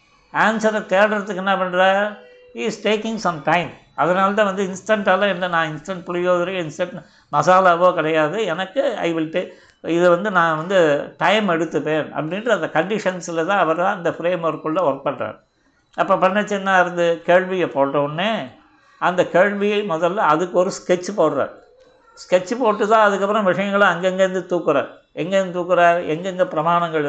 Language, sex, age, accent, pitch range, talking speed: Tamil, male, 60-79, native, 160-190 Hz, 135 wpm